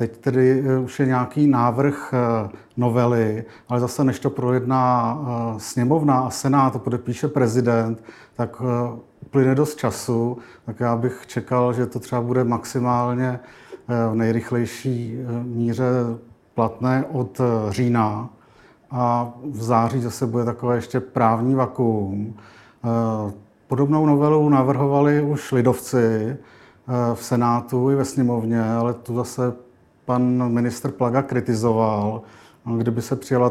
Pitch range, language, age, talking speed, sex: 115-130 Hz, Czech, 50-69, 120 wpm, male